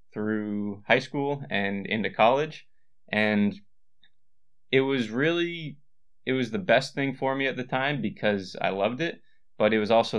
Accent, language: American, English